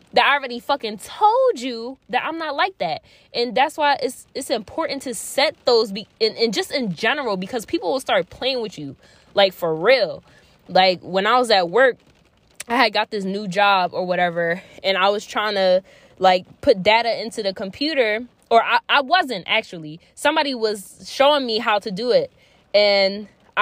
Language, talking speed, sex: English, 195 wpm, female